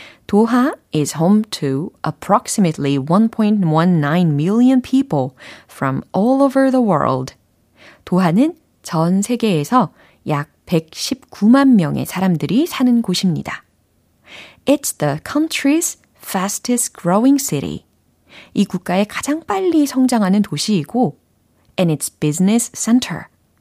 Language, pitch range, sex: Korean, 160-245 Hz, female